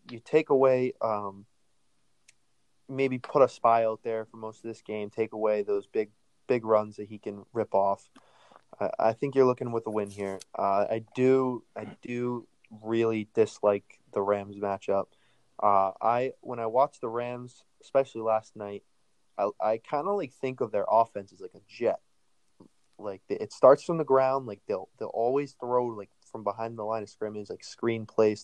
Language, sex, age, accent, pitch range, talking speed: English, male, 20-39, American, 105-125 Hz, 190 wpm